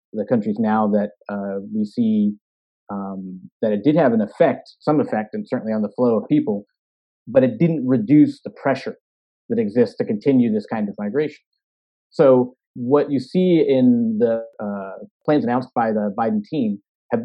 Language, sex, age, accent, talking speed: English, male, 30-49, American, 175 wpm